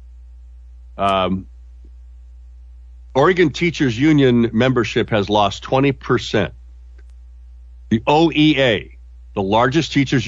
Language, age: English, 50-69